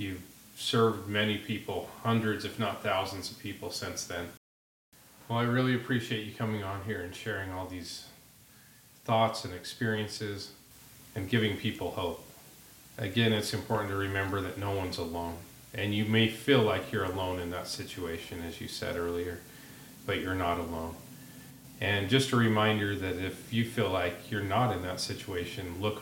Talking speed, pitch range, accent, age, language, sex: 170 wpm, 90-115 Hz, American, 40-59, English, male